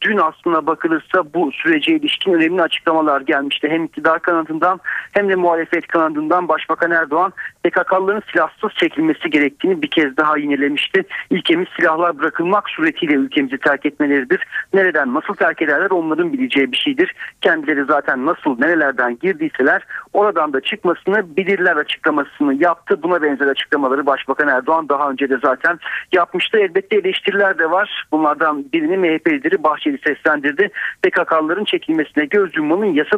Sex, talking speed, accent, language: male, 135 wpm, native, Turkish